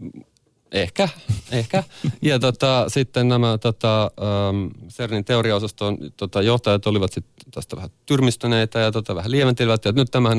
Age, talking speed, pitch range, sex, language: 30-49, 135 wpm, 95-120 Hz, male, Finnish